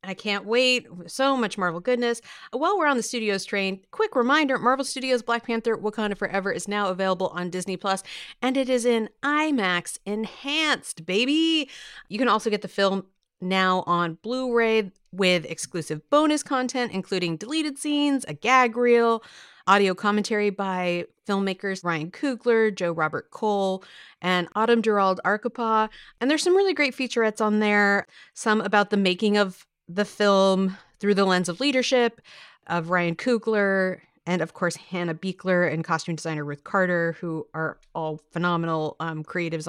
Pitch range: 180-235 Hz